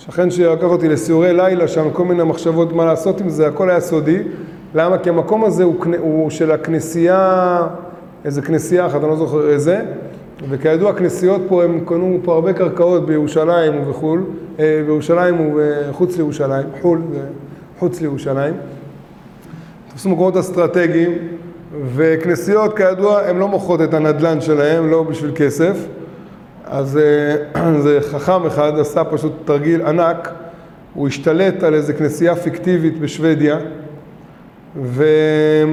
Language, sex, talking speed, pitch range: Hebrew, male, 135 wpm, 155-180 Hz